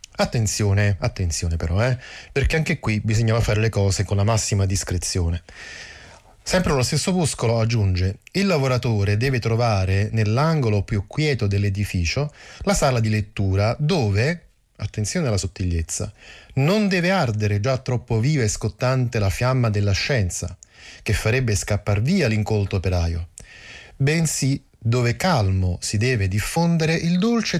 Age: 30-49